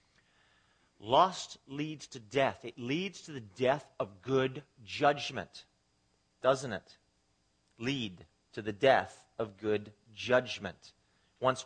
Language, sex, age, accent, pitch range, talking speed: English, male, 40-59, American, 110-150 Hz, 115 wpm